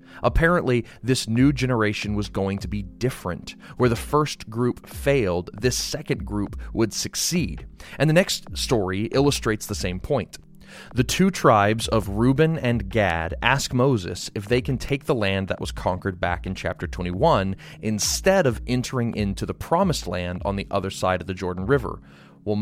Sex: male